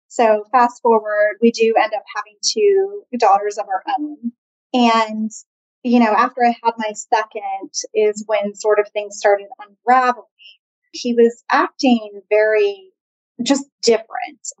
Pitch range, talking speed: 210-255 Hz, 140 wpm